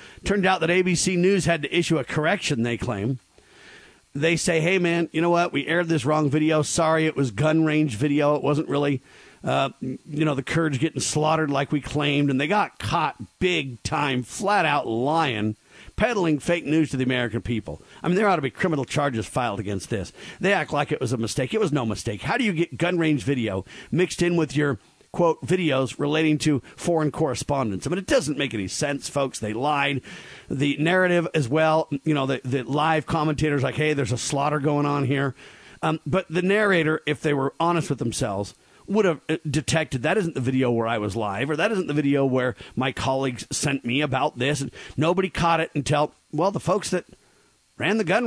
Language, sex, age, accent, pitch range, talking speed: English, male, 50-69, American, 135-165 Hz, 215 wpm